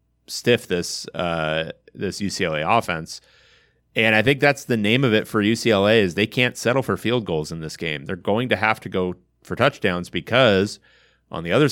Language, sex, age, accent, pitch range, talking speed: English, male, 30-49, American, 85-105 Hz, 195 wpm